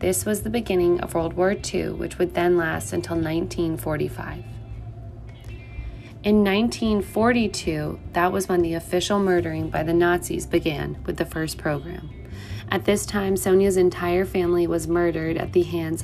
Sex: female